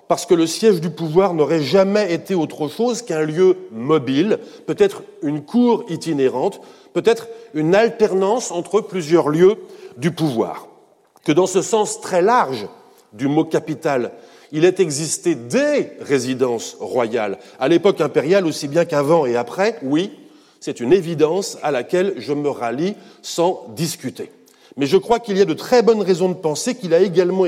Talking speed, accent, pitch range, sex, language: 165 wpm, French, 165-215 Hz, male, French